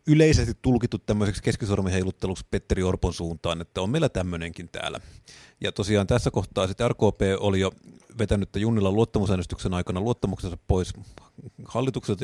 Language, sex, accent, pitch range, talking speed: Finnish, male, native, 100-125 Hz, 135 wpm